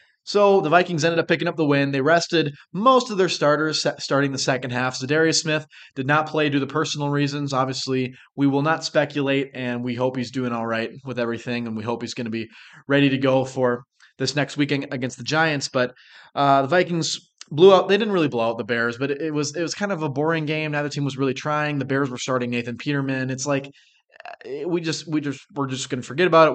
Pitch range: 125-160 Hz